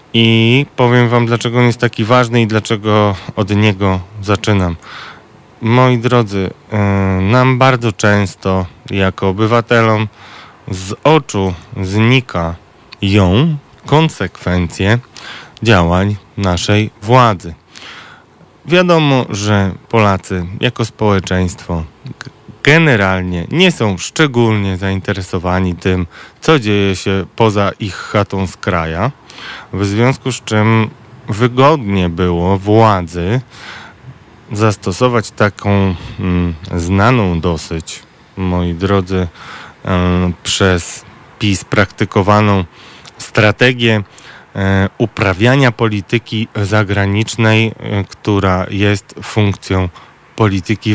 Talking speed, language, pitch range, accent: 85 wpm, Polish, 95-115 Hz, native